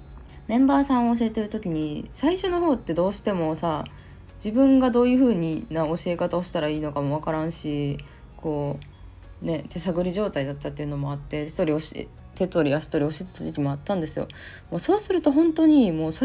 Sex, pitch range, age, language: female, 140-215 Hz, 20-39, Japanese